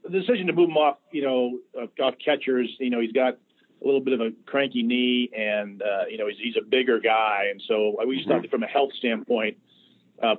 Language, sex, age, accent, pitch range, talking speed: English, male, 40-59, American, 115-140 Hz, 225 wpm